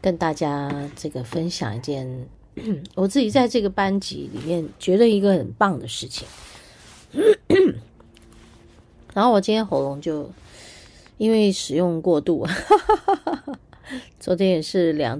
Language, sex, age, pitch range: Chinese, female, 30-49, 140-200 Hz